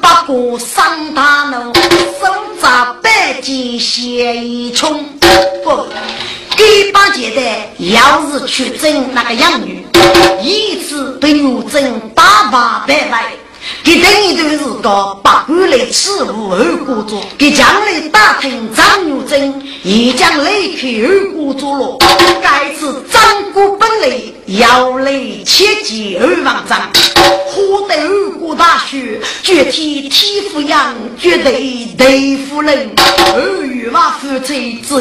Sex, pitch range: female, 255-365 Hz